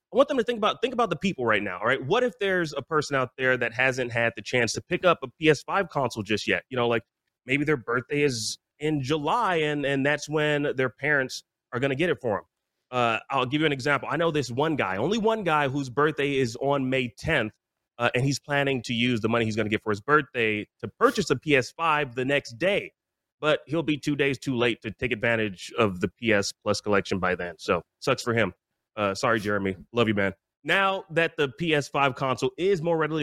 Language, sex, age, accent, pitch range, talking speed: English, male, 30-49, American, 120-160 Hz, 240 wpm